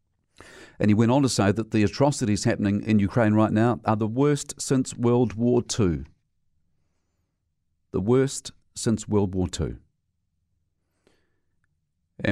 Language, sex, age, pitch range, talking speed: English, male, 50-69, 85-115 Hz, 130 wpm